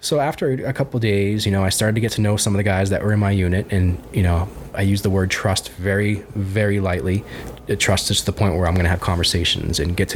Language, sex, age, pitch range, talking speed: English, male, 20-39, 95-115 Hz, 270 wpm